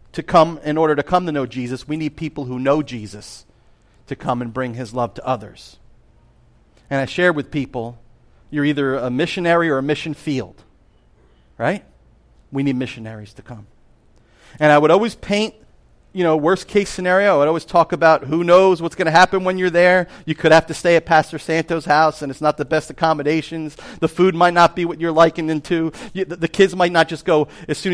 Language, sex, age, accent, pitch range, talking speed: English, male, 40-59, American, 120-165 Hz, 210 wpm